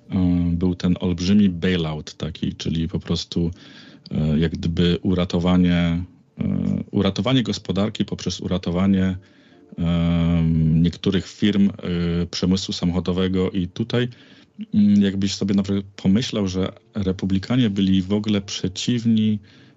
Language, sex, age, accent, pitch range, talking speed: Polish, male, 40-59, native, 90-100 Hz, 90 wpm